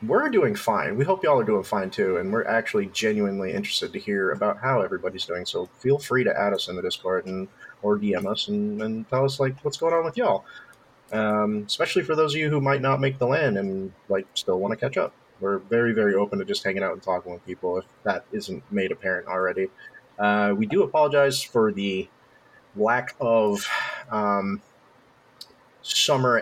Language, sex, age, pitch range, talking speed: English, male, 30-49, 100-135 Hz, 205 wpm